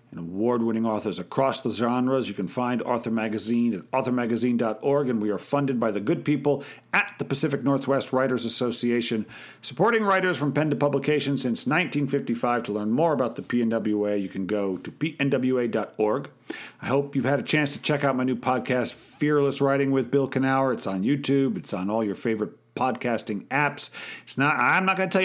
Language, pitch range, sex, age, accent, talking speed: English, 110-140 Hz, male, 50-69, American, 190 wpm